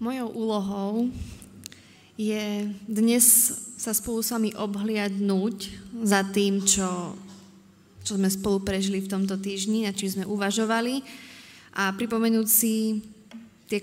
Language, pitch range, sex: Slovak, 200-230 Hz, female